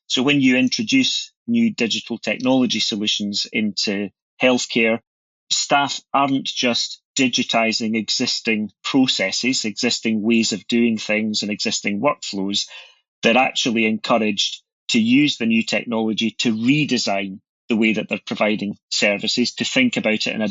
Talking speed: 135 wpm